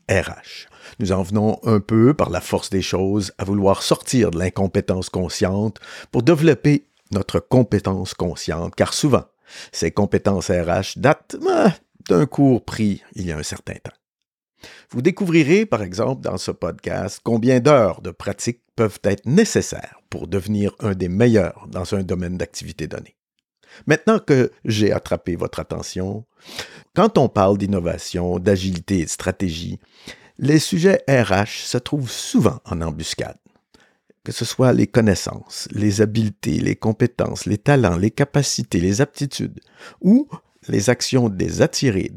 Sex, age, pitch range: male, 50-69, 95-125 Hz